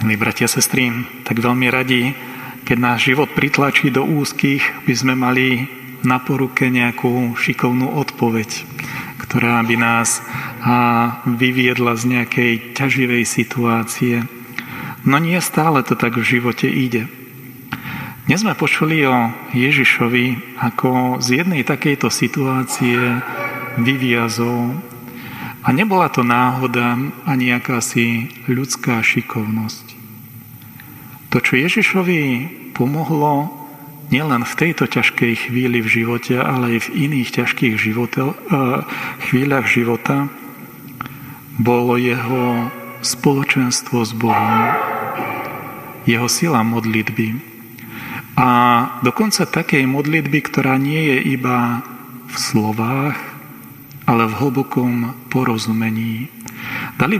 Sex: male